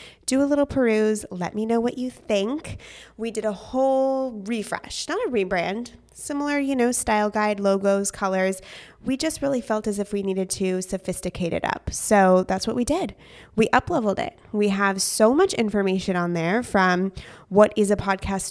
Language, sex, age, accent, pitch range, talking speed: English, female, 20-39, American, 185-230 Hz, 185 wpm